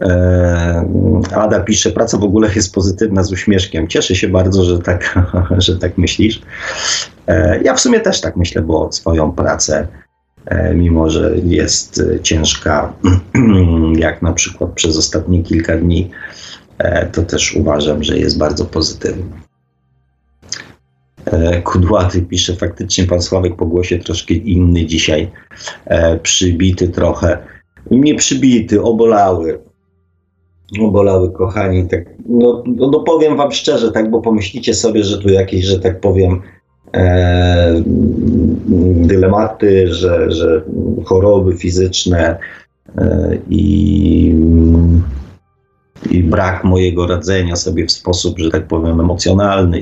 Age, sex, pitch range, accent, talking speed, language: 30-49, male, 85-100 Hz, native, 115 wpm, Polish